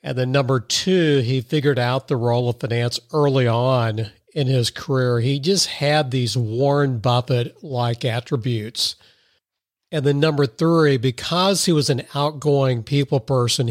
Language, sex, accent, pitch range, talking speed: English, male, American, 120-145 Hz, 150 wpm